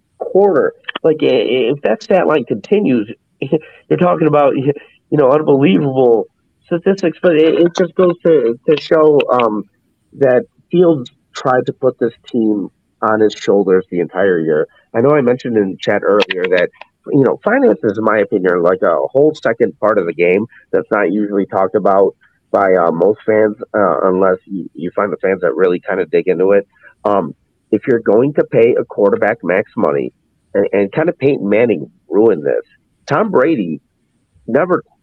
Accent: American